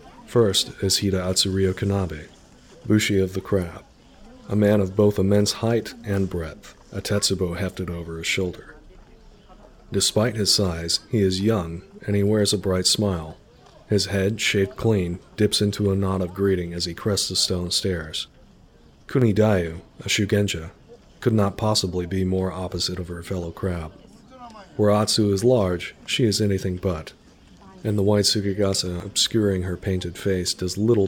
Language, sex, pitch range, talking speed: English, male, 90-105 Hz, 160 wpm